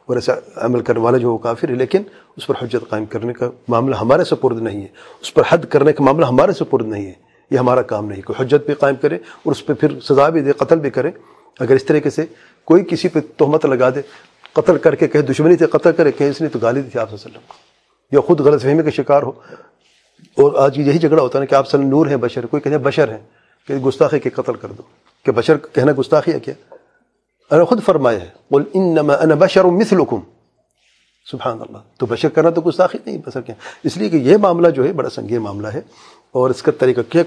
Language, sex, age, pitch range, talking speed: English, male, 40-59, 125-160 Hz, 175 wpm